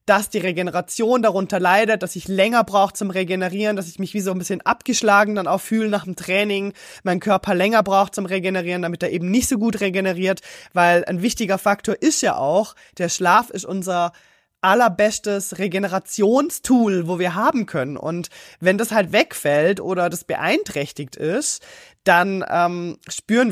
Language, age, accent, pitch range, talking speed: German, 20-39, German, 180-220 Hz, 170 wpm